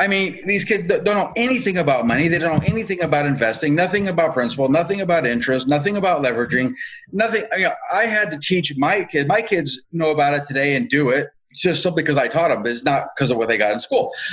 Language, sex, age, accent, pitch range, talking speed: English, male, 30-49, American, 145-190 Hz, 235 wpm